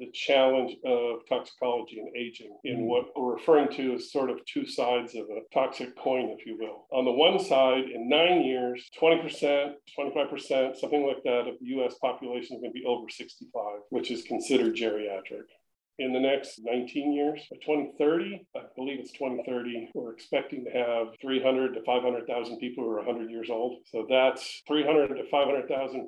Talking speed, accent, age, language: 175 wpm, American, 40-59, English